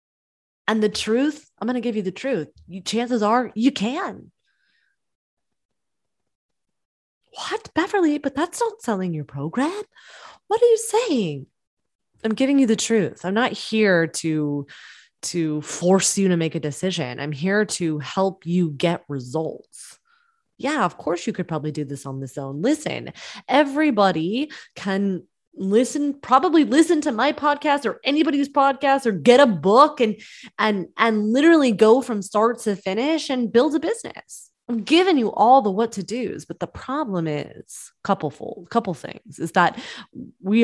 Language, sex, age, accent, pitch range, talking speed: English, female, 20-39, American, 175-260 Hz, 160 wpm